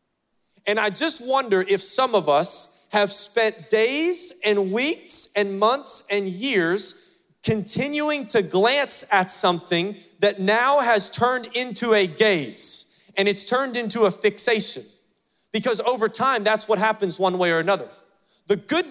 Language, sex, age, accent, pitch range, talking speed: English, male, 30-49, American, 200-265 Hz, 150 wpm